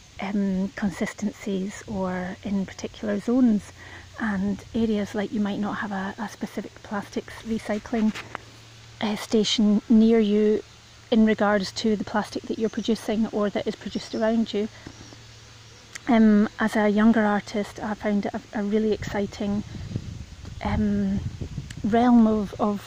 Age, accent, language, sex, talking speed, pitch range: 30-49, British, English, female, 135 wpm, 205-225 Hz